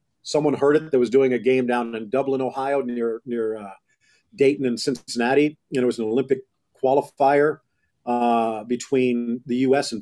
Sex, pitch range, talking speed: male, 125-155 Hz, 185 wpm